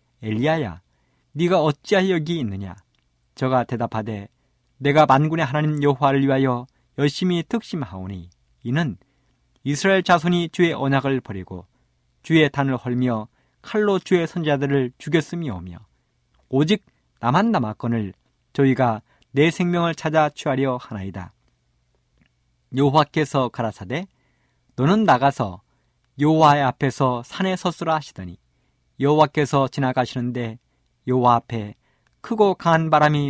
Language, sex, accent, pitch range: Korean, male, native, 110-155 Hz